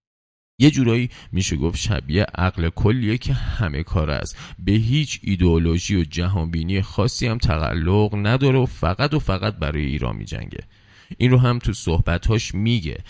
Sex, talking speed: male, 150 wpm